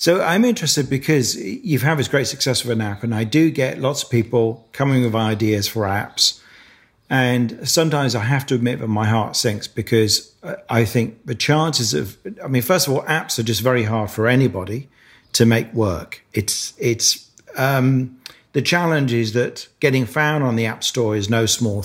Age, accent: 40-59, British